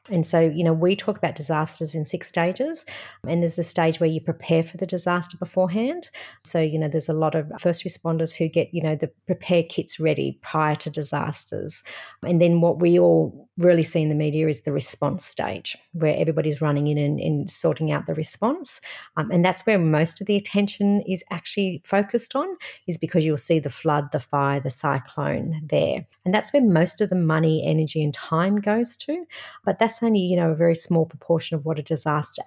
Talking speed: 210 wpm